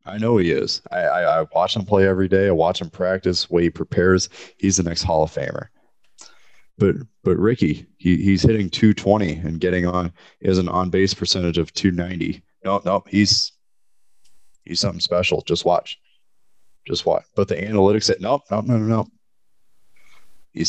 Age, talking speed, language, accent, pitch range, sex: 30-49, 185 wpm, English, American, 85-105 Hz, male